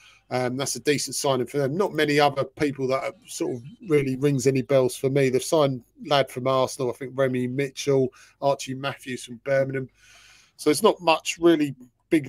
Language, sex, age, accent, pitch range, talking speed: English, male, 30-49, British, 130-160 Hz, 190 wpm